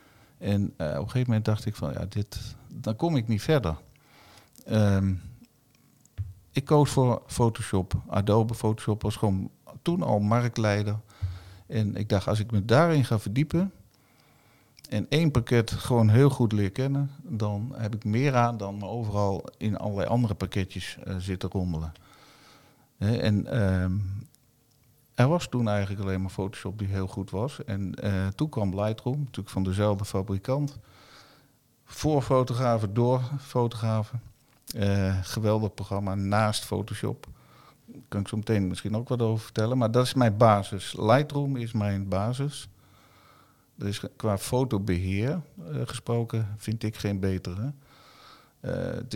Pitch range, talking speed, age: 100-125 Hz, 150 wpm, 50-69